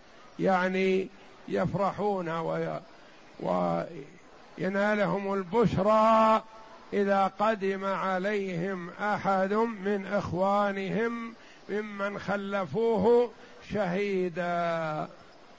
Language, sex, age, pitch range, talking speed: Arabic, male, 50-69, 195-220 Hz, 50 wpm